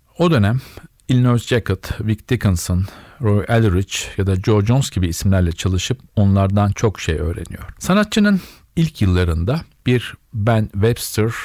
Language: Turkish